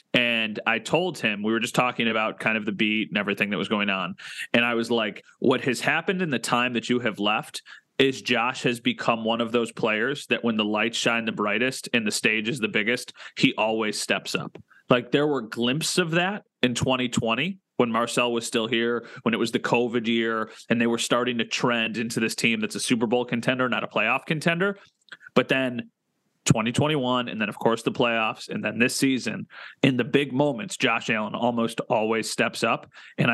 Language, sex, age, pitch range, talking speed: English, male, 30-49, 115-145 Hz, 215 wpm